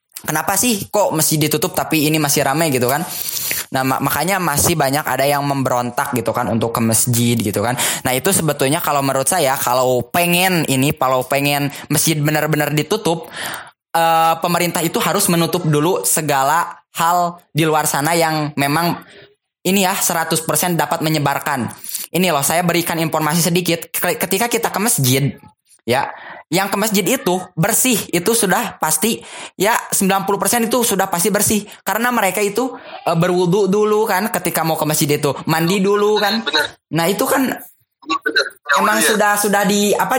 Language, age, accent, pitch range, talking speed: Indonesian, 10-29, native, 150-195 Hz, 155 wpm